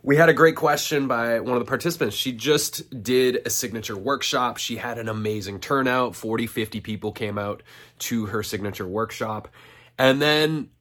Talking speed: 180 wpm